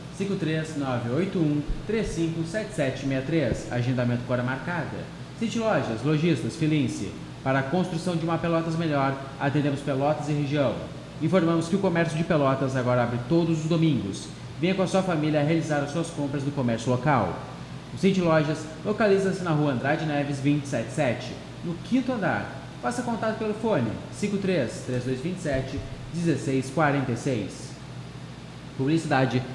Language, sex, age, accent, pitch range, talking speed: Portuguese, male, 20-39, Brazilian, 135-175 Hz, 120 wpm